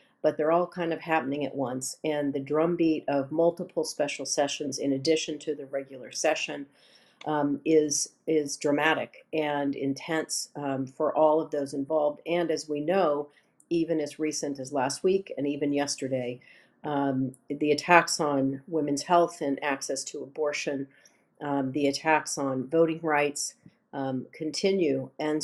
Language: English